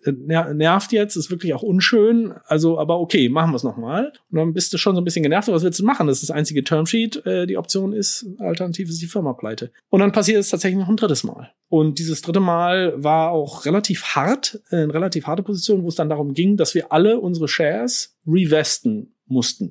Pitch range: 140-190 Hz